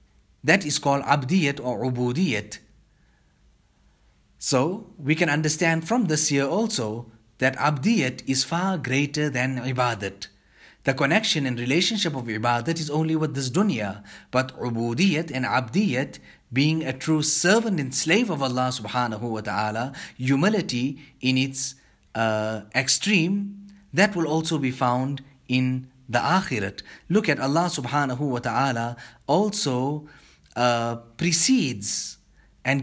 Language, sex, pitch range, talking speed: English, male, 125-165 Hz, 130 wpm